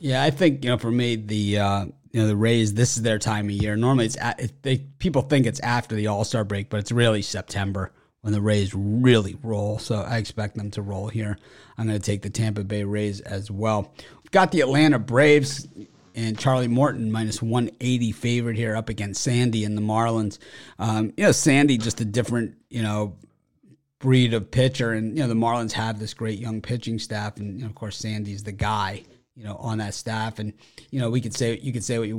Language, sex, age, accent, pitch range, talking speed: English, male, 30-49, American, 105-125 Hz, 225 wpm